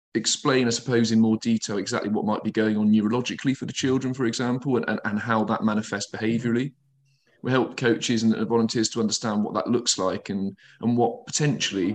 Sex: male